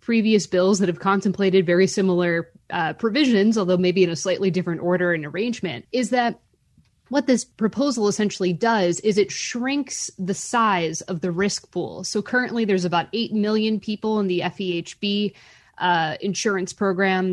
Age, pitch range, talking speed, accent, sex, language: 20-39, 180-225 Hz, 165 wpm, American, female, English